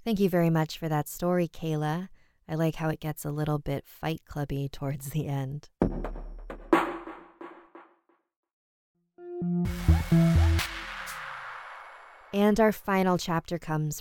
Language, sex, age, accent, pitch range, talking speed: English, female, 20-39, American, 145-180 Hz, 110 wpm